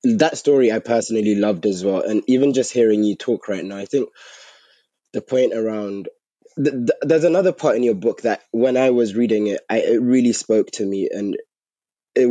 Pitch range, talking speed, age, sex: 105-130 Hz, 205 wpm, 20-39, male